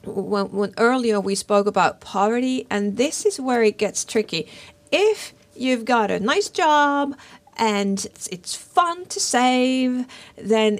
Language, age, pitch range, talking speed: Finnish, 40-59, 205-250 Hz, 150 wpm